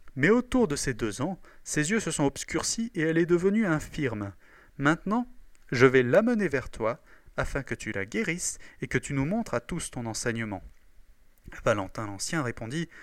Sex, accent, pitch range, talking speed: male, French, 115-165 Hz, 185 wpm